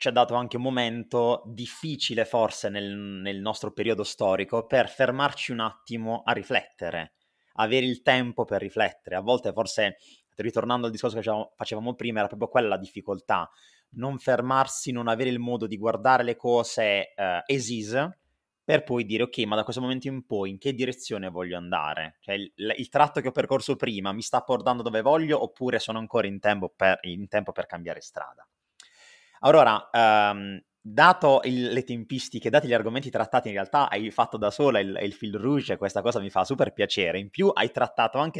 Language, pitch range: Italian, 105-125 Hz